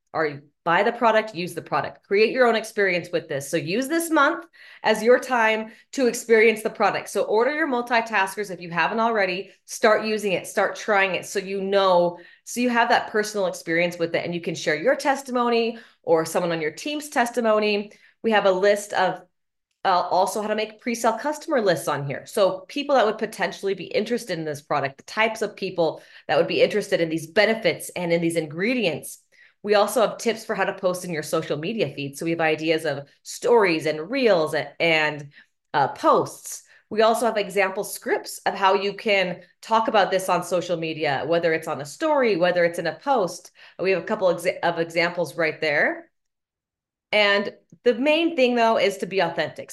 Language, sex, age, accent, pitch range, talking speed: English, female, 30-49, American, 170-225 Hz, 205 wpm